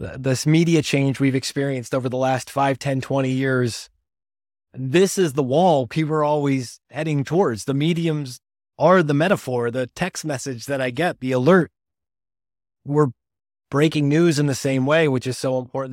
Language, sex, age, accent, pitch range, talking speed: English, male, 20-39, American, 120-145 Hz, 170 wpm